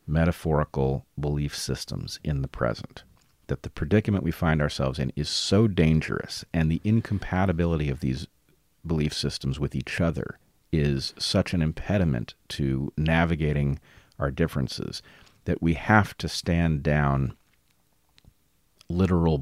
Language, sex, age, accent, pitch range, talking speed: English, male, 40-59, American, 75-90 Hz, 125 wpm